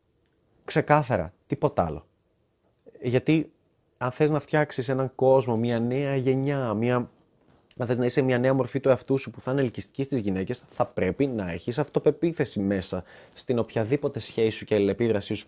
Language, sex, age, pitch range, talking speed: Greek, male, 20-39, 110-145 Hz, 165 wpm